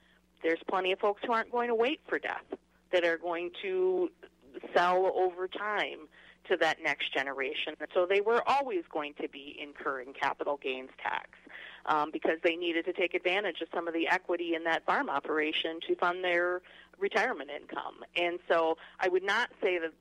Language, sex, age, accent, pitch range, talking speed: English, female, 30-49, American, 150-185 Hz, 185 wpm